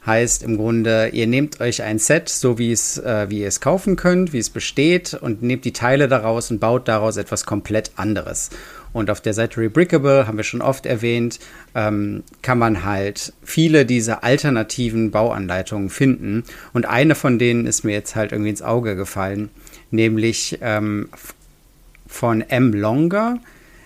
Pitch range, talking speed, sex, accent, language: 110-140 Hz, 160 wpm, male, German, German